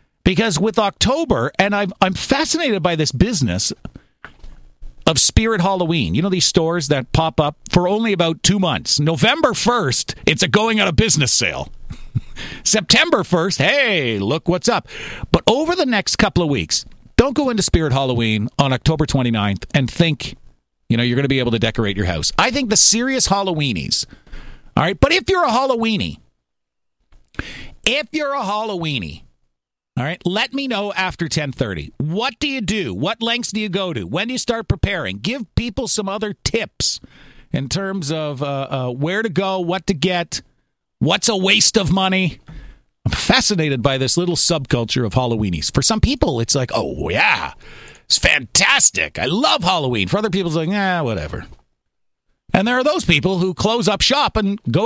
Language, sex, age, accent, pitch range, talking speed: English, male, 50-69, American, 130-210 Hz, 180 wpm